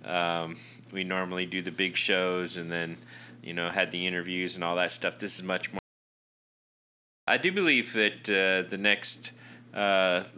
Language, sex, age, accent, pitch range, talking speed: English, male, 30-49, American, 85-100 Hz, 175 wpm